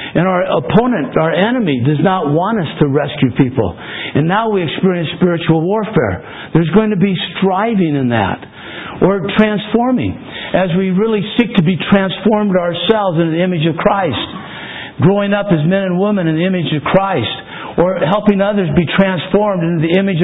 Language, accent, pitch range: English, American, 160-200 Hz